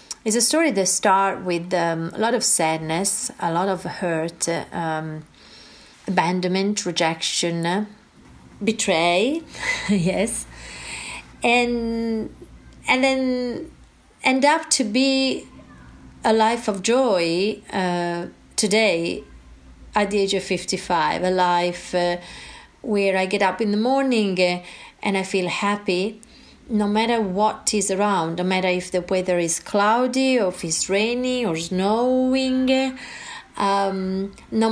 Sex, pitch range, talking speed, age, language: female, 180-230 Hz, 130 wpm, 30-49, English